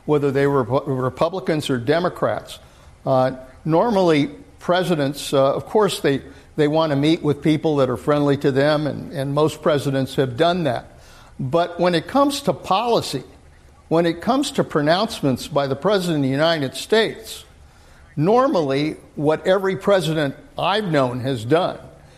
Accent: American